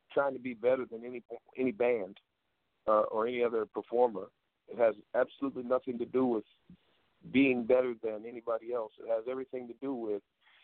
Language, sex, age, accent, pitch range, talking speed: English, male, 50-69, American, 110-130 Hz, 175 wpm